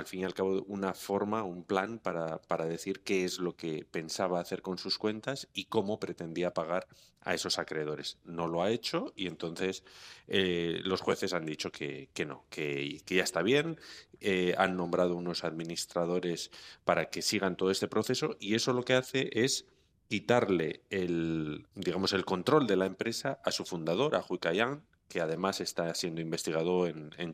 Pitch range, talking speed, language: 85-95 Hz, 185 wpm, Spanish